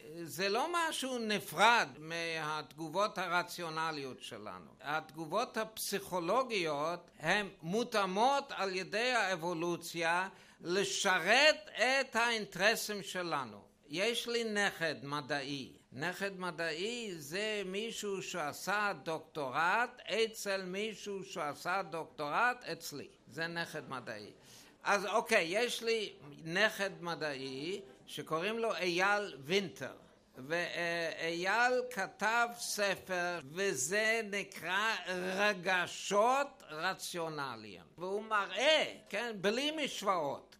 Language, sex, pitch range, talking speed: Hebrew, male, 165-220 Hz, 85 wpm